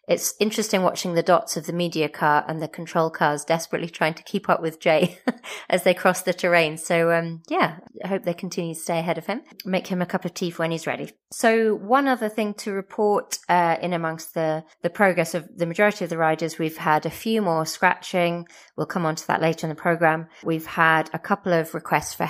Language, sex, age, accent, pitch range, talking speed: English, female, 30-49, British, 155-180 Hz, 235 wpm